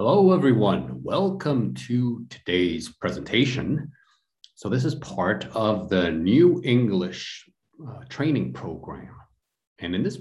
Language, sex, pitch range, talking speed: English, male, 95-135 Hz, 120 wpm